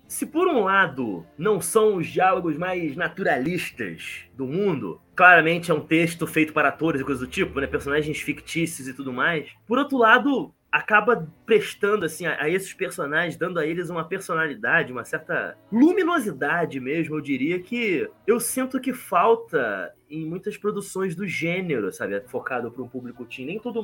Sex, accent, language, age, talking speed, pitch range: male, Brazilian, Portuguese, 20-39, 170 wpm, 155-225 Hz